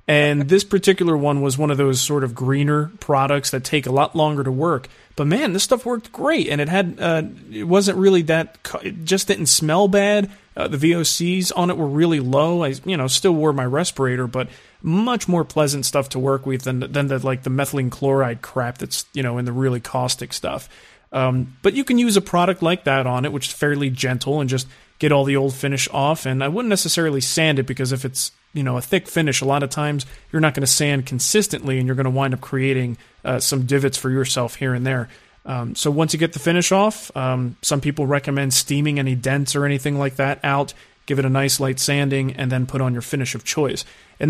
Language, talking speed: English, 235 wpm